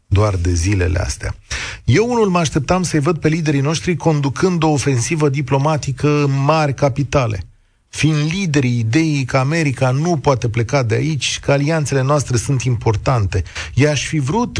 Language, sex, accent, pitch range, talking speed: Romanian, male, native, 105-145 Hz, 155 wpm